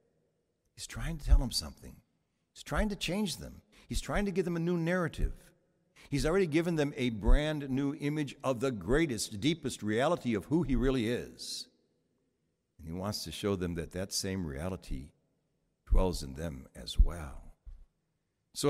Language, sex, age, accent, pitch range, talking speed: English, male, 60-79, American, 95-140 Hz, 170 wpm